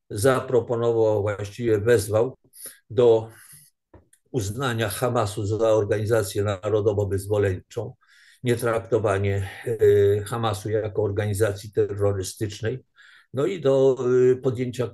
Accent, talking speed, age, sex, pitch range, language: native, 80 wpm, 50-69, male, 110-135 Hz, Polish